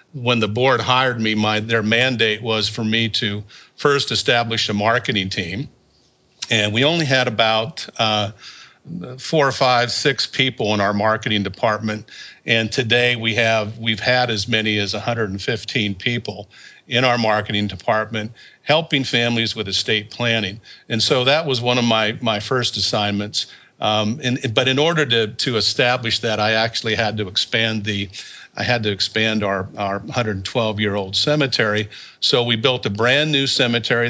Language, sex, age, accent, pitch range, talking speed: English, male, 50-69, American, 105-120 Hz, 160 wpm